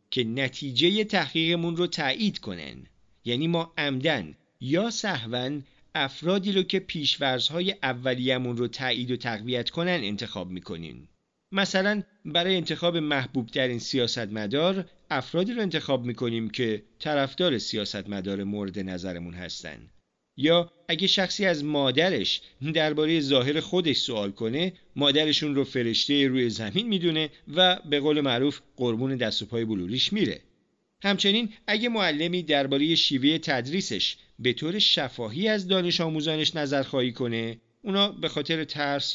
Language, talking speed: Persian, 130 wpm